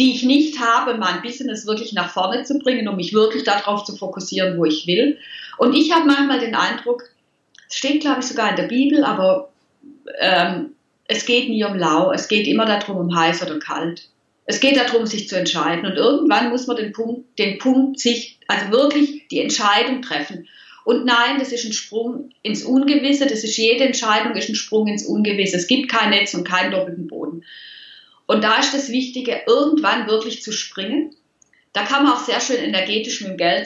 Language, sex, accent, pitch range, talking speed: German, female, German, 185-255 Hz, 205 wpm